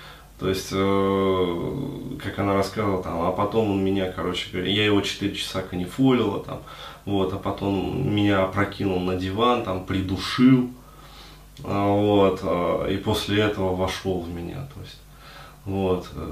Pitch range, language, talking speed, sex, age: 95-115 Hz, Russian, 130 wpm, male, 20-39